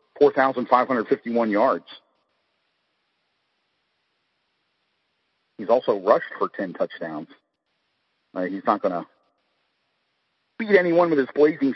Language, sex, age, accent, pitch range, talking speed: English, male, 40-59, American, 110-140 Hz, 85 wpm